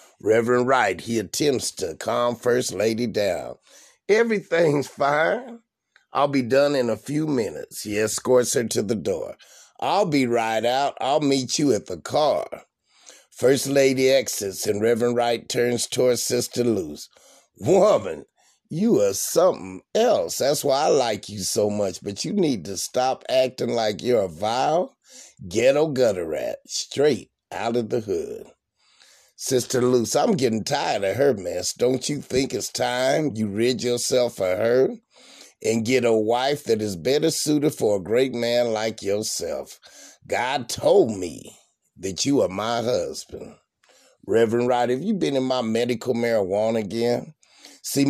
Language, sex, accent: English, male, American